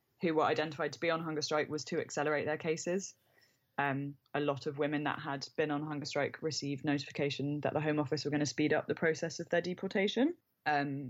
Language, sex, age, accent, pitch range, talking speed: English, female, 20-39, British, 140-160 Hz, 220 wpm